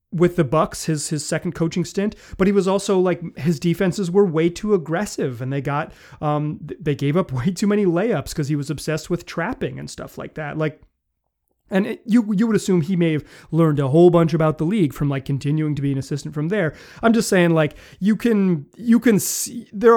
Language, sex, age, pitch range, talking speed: English, male, 30-49, 140-180 Hz, 230 wpm